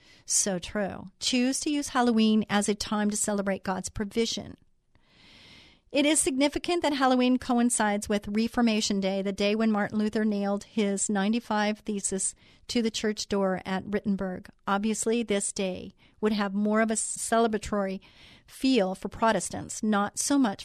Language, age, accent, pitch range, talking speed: English, 40-59, American, 200-235 Hz, 150 wpm